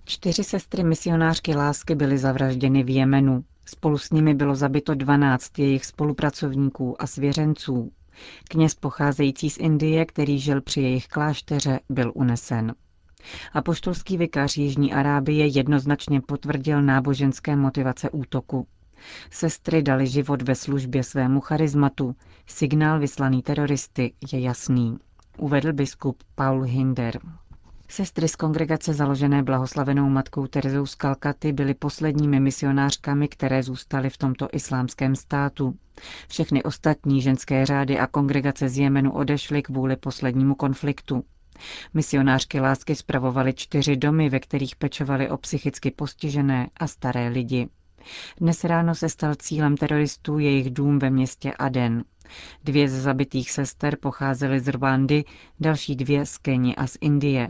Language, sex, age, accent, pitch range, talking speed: Czech, female, 40-59, native, 130-150 Hz, 130 wpm